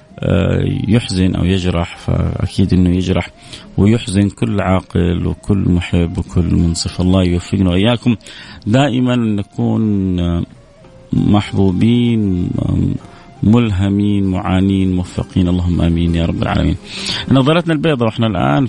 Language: Arabic